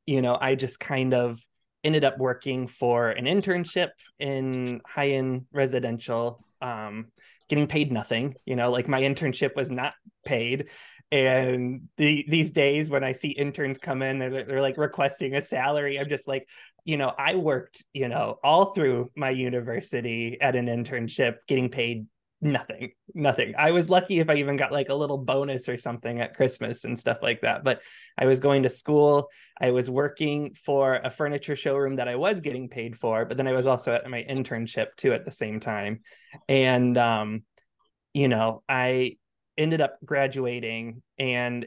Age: 20-39